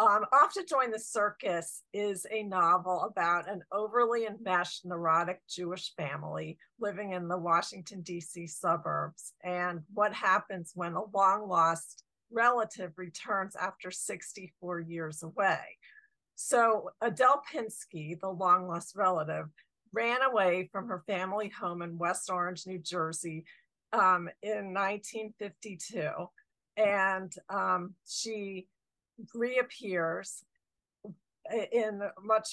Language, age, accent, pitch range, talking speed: English, 50-69, American, 180-220 Hz, 110 wpm